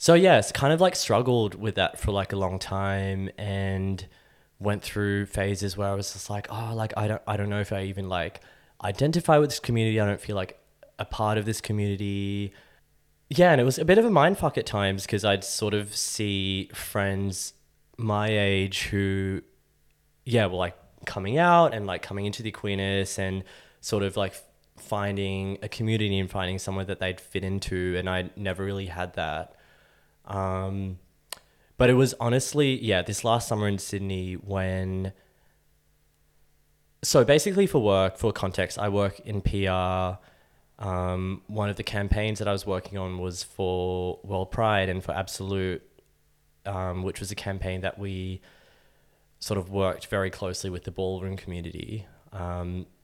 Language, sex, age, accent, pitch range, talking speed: English, male, 20-39, Australian, 95-105 Hz, 175 wpm